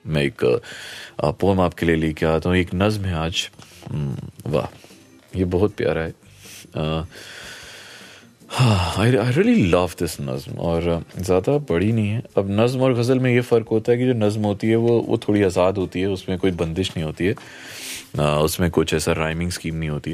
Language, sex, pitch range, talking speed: Hindi, male, 80-110 Hz, 185 wpm